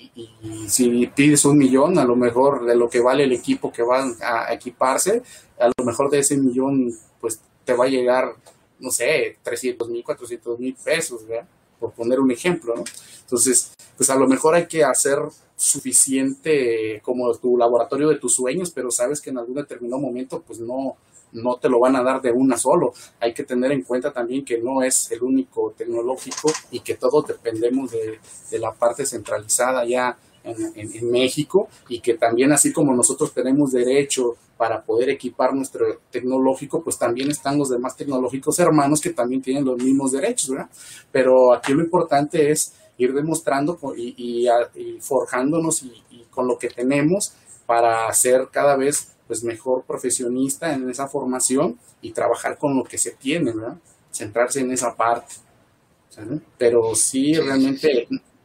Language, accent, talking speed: Spanish, Mexican, 175 wpm